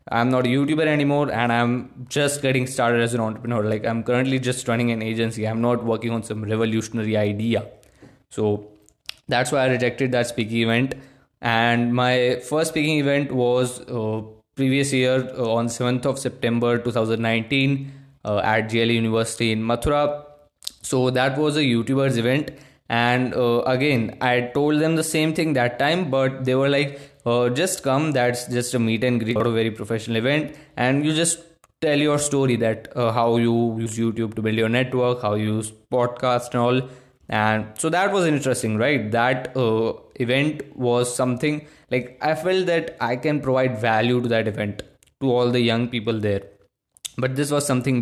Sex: male